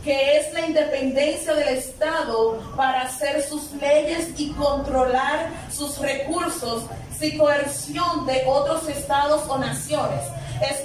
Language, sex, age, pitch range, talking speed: Spanish, female, 30-49, 255-300 Hz, 120 wpm